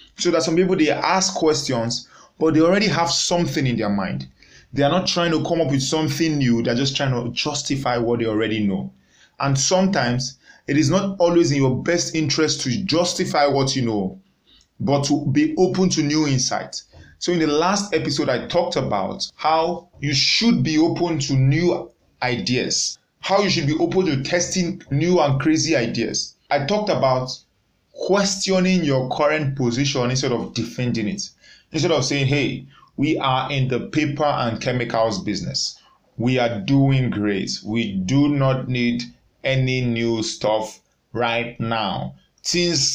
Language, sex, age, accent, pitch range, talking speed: English, male, 20-39, Nigerian, 115-155 Hz, 170 wpm